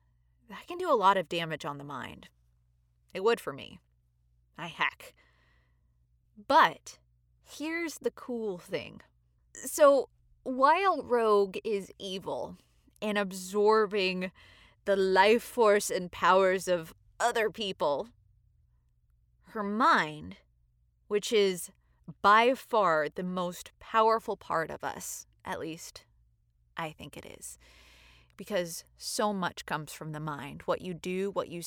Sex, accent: female, American